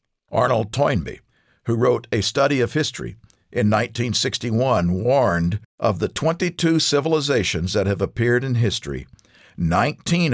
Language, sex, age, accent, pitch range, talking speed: English, male, 50-69, American, 105-145 Hz, 120 wpm